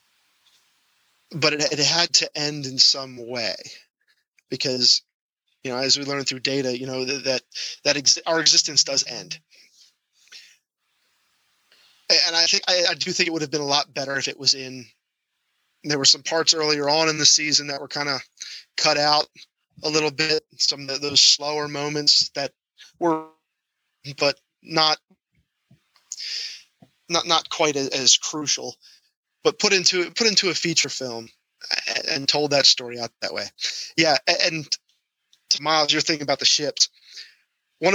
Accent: American